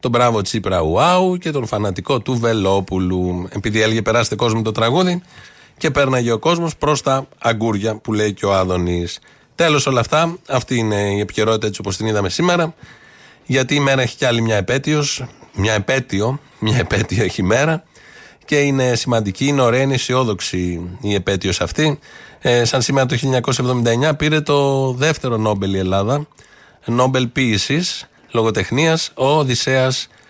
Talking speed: 155 wpm